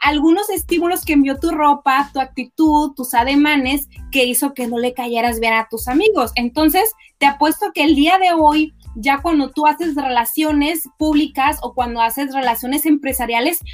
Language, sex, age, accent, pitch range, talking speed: Spanish, female, 30-49, Mexican, 250-320 Hz, 170 wpm